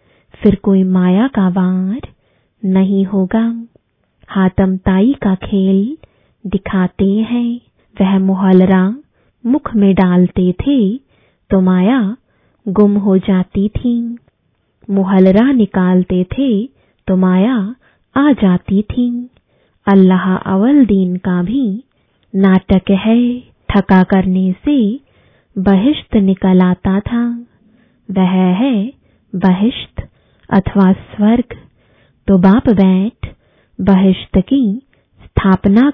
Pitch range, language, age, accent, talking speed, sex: 190-235 Hz, English, 20-39, Indian, 85 wpm, female